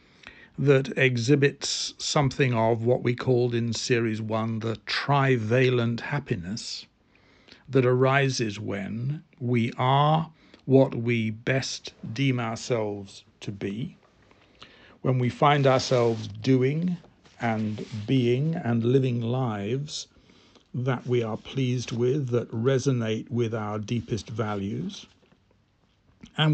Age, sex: 60-79, male